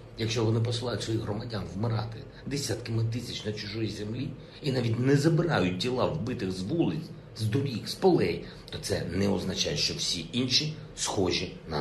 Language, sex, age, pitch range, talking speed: Ukrainian, male, 50-69, 105-125 Hz, 165 wpm